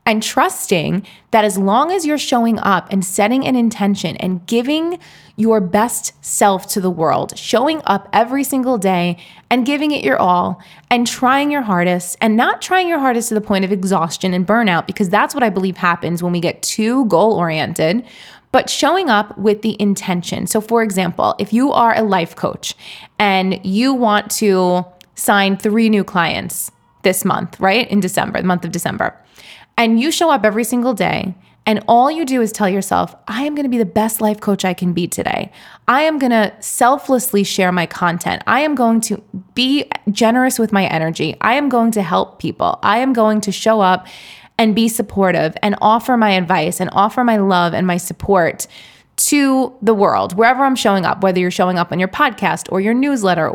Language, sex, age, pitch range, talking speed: English, female, 20-39, 185-240 Hz, 200 wpm